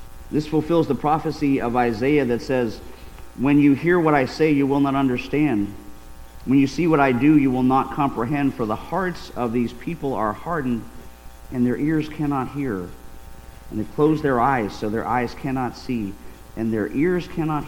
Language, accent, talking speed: English, American, 185 wpm